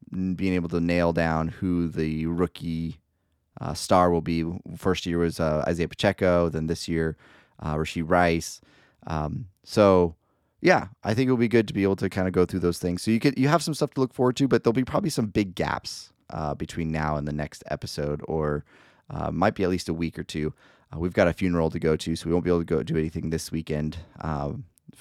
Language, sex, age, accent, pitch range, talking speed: English, male, 30-49, American, 80-95 Hz, 235 wpm